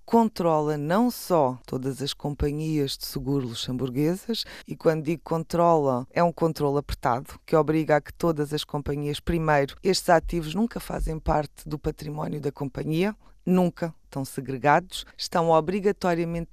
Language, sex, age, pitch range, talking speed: Portuguese, female, 20-39, 145-175 Hz, 140 wpm